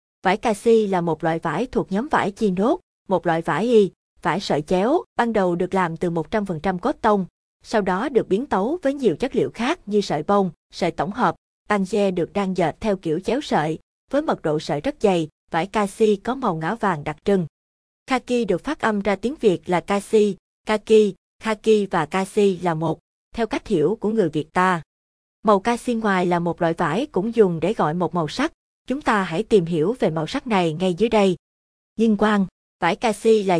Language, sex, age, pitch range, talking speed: Vietnamese, female, 20-39, 170-225 Hz, 210 wpm